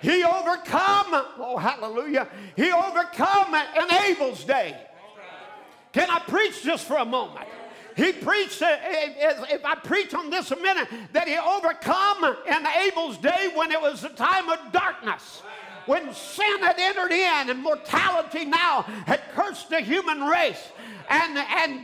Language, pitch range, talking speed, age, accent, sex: English, 305-365 Hz, 145 wpm, 50-69, American, male